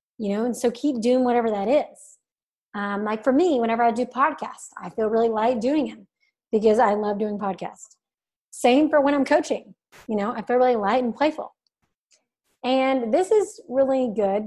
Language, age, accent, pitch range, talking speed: English, 30-49, American, 210-250 Hz, 190 wpm